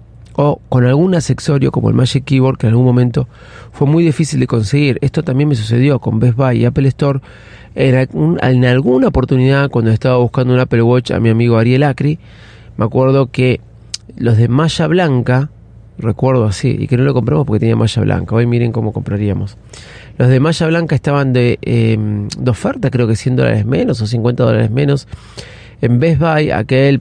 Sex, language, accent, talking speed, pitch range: male, Spanish, Argentinian, 190 wpm, 115-140 Hz